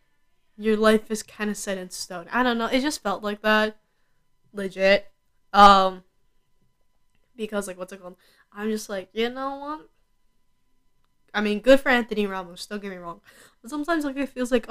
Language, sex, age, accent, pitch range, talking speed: English, female, 10-29, American, 190-220 Hz, 185 wpm